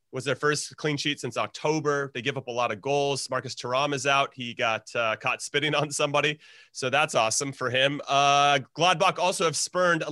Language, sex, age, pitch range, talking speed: English, male, 30-49, 125-150 Hz, 215 wpm